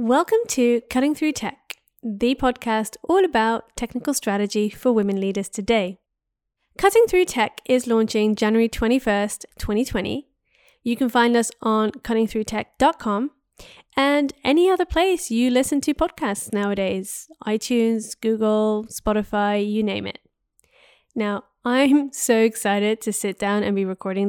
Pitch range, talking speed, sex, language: 210-275 Hz, 135 wpm, female, English